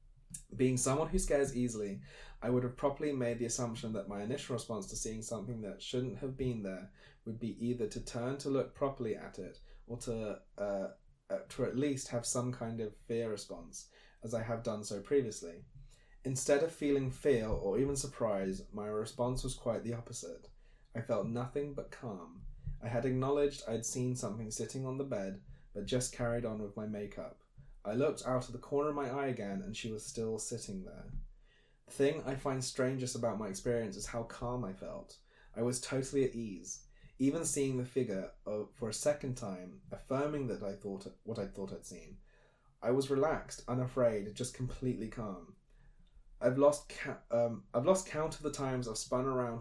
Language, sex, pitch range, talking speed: English, male, 115-135 Hz, 190 wpm